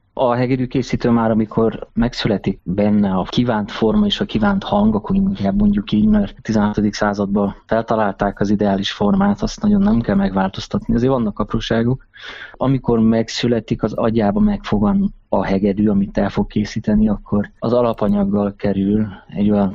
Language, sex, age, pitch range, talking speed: Hungarian, male, 20-39, 100-120 Hz, 155 wpm